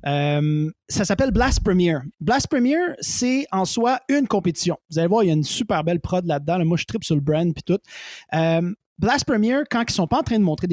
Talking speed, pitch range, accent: 240 wpm, 165-210 Hz, Canadian